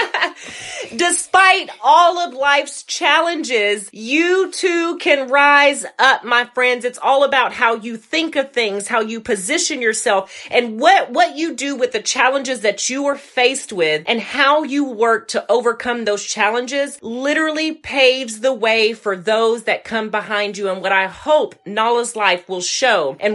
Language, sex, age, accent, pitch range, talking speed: English, female, 30-49, American, 200-265 Hz, 165 wpm